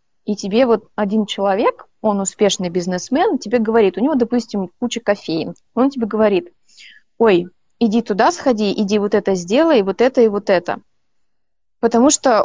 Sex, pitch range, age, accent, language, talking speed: female, 205-260 Hz, 20-39, native, Russian, 160 wpm